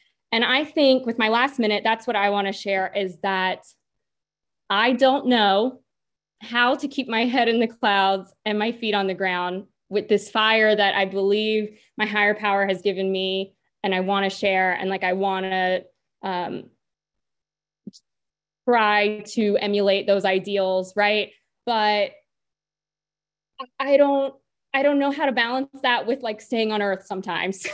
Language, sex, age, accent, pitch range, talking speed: English, female, 20-39, American, 195-260 Hz, 165 wpm